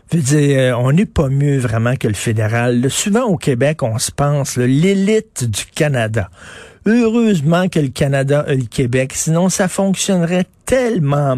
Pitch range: 120-155 Hz